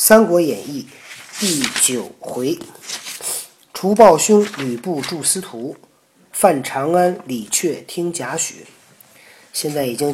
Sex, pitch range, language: male, 125-180 Hz, Chinese